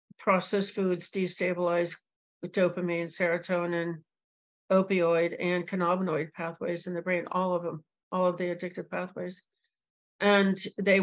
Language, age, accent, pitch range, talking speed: English, 60-79, American, 175-200 Hz, 120 wpm